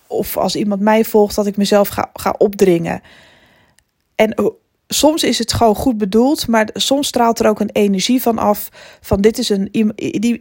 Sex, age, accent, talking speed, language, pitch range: female, 20-39, Dutch, 180 wpm, Dutch, 205-245 Hz